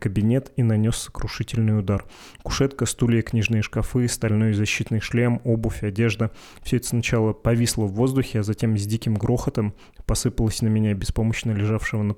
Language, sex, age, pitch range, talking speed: Russian, male, 20-39, 110-120 Hz, 155 wpm